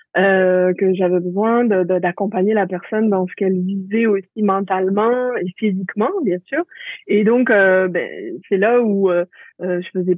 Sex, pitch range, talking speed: female, 190-225 Hz, 175 wpm